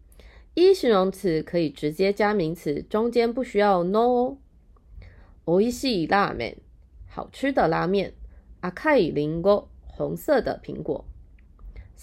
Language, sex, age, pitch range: Japanese, female, 20-39, 155-240 Hz